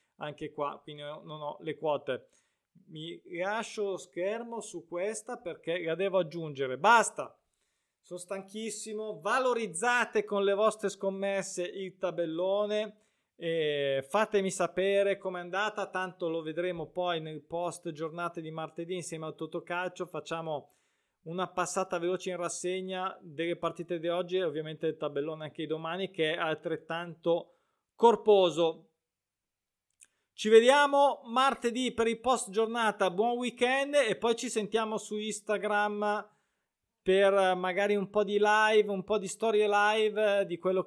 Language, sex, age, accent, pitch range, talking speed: Italian, male, 20-39, native, 170-210 Hz, 140 wpm